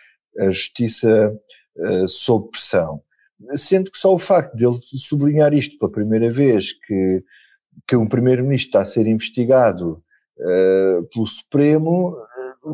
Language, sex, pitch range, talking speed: Portuguese, male, 100-130 Hz, 135 wpm